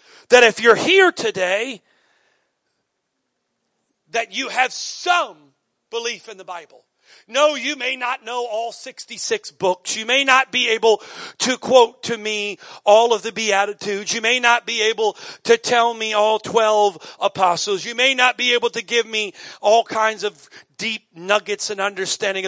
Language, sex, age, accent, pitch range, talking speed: English, male, 40-59, American, 190-250 Hz, 160 wpm